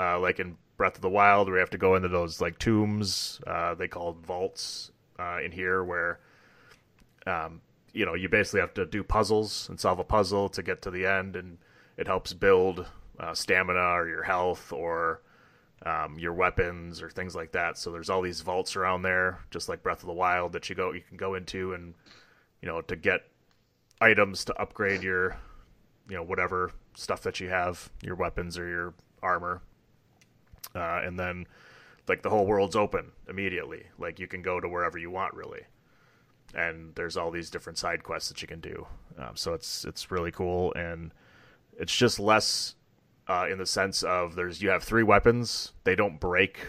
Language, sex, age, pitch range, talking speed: English, male, 30-49, 90-100 Hz, 195 wpm